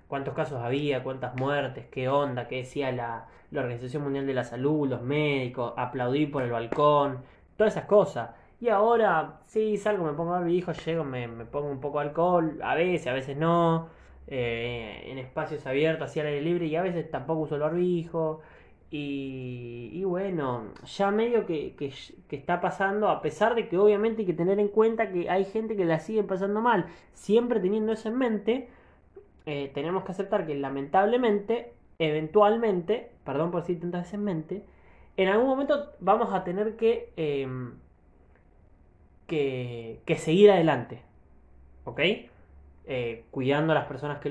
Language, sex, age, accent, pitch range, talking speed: Spanish, male, 20-39, Argentinian, 130-195 Hz, 170 wpm